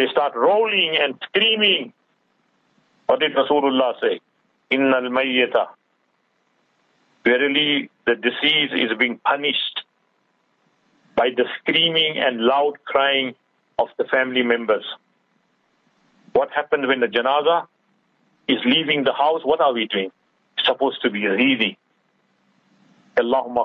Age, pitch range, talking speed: 50-69, 120-160 Hz, 110 wpm